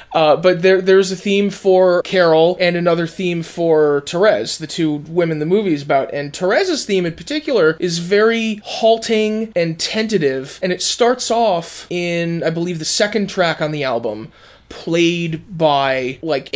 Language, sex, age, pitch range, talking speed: English, male, 20-39, 155-190 Hz, 165 wpm